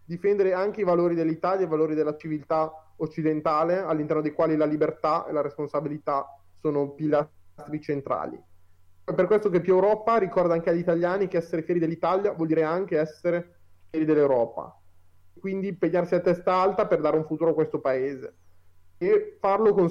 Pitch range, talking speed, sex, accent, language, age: 155-190 Hz, 170 wpm, male, native, Italian, 30-49